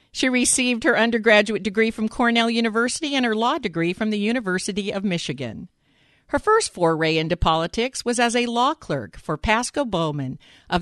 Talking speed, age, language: 170 wpm, 50-69, English